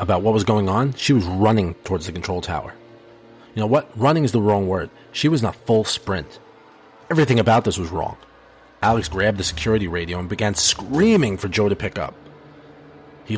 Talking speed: 200 wpm